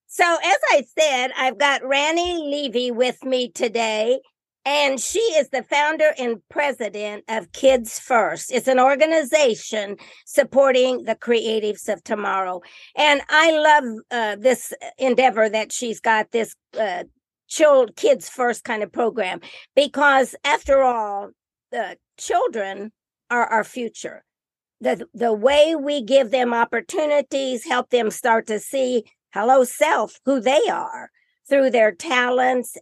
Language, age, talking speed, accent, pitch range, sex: English, 50-69, 135 wpm, American, 220-275 Hz, female